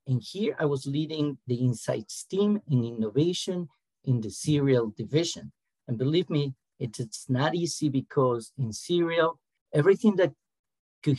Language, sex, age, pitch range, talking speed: English, male, 50-69, 125-150 Hz, 140 wpm